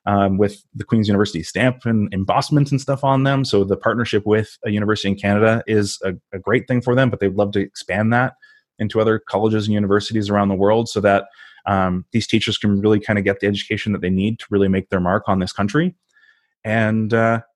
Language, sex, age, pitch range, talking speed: English, male, 20-39, 100-115 Hz, 220 wpm